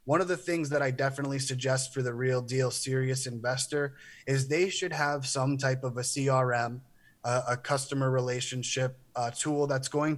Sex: male